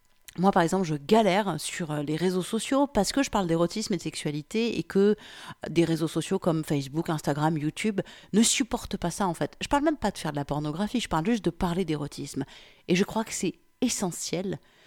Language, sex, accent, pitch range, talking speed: French, female, French, 165-220 Hz, 220 wpm